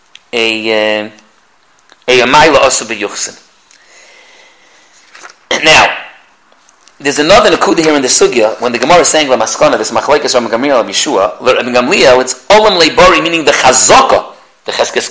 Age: 40-59